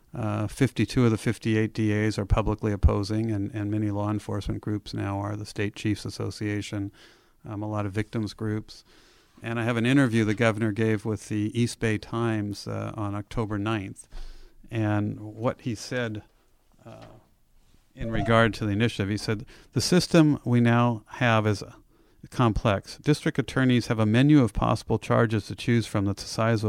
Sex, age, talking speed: male, 50-69, 175 wpm